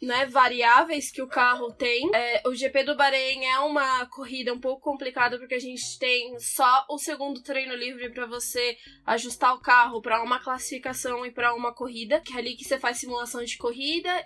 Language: Portuguese